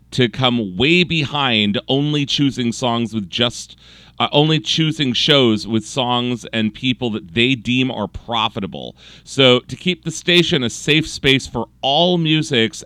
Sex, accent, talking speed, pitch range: male, American, 155 wpm, 105-145 Hz